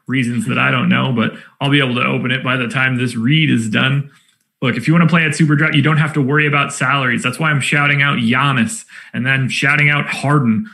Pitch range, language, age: 135-165 Hz, English, 30-49